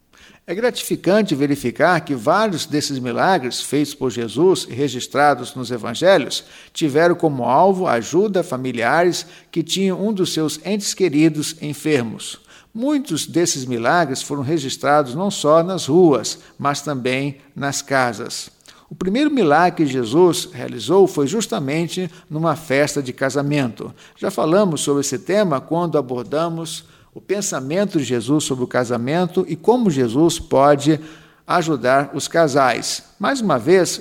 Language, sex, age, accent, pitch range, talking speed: Portuguese, male, 50-69, Brazilian, 140-180 Hz, 135 wpm